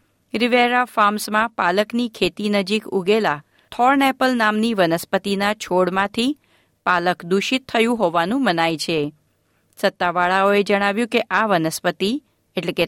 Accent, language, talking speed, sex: native, Gujarati, 110 wpm, female